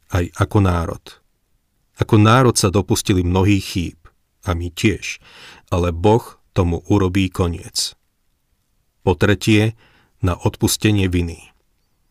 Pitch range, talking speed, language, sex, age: 90-110 Hz, 110 wpm, Slovak, male, 40-59